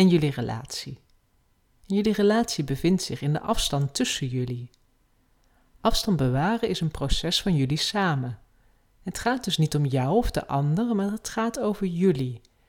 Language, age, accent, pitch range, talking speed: Dutch, 40-59, Dutch, 135-200 Hz, 160 wpm